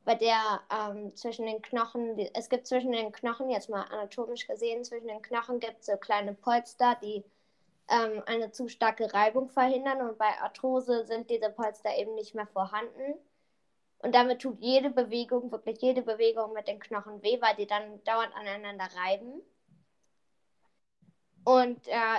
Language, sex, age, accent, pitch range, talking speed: German, female, 10-29, German, 210-245 Hz, 160 wpm